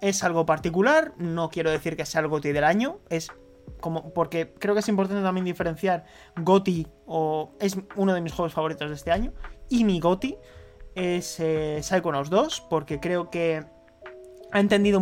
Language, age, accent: Spanish, 20-39, Spanish